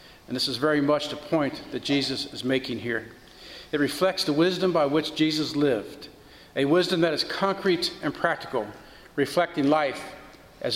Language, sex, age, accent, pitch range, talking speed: English, male, 50-69, American, 145-175 Hz, 165 wpm